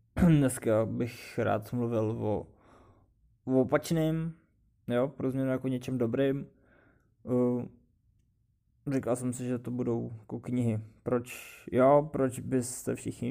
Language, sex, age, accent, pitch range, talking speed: Czech, male, 20-39, native, 115-125 Hz, 115 wpm